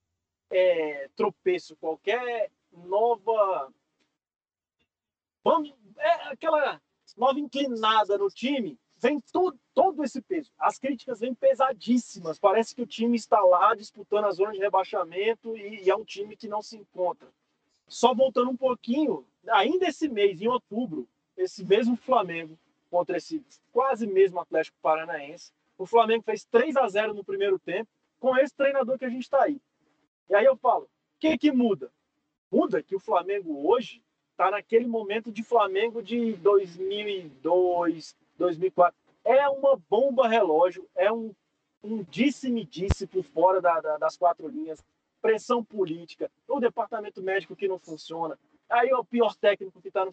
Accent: Brazilian